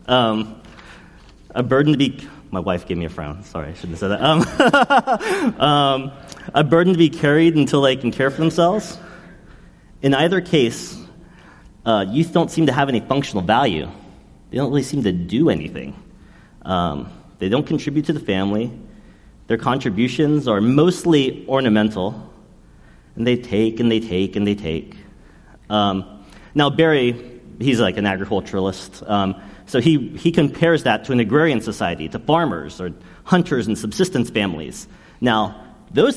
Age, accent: 30-49, American